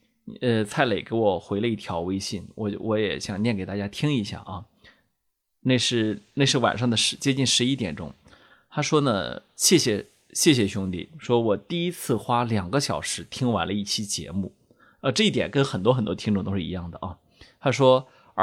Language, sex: Chinese, male